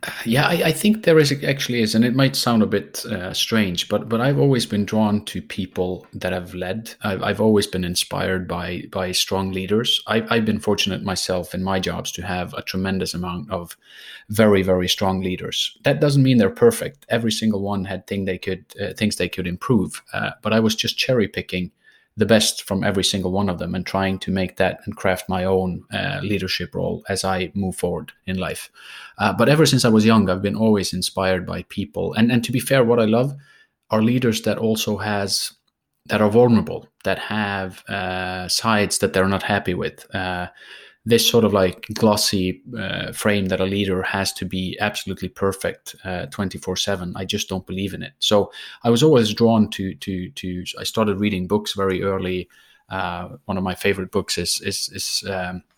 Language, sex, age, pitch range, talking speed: English, male, 30-49, 95-110 Hz, 205 wpm